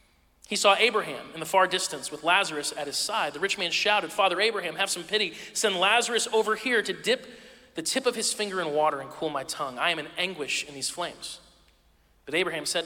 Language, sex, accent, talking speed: English, male, American, 225 wpm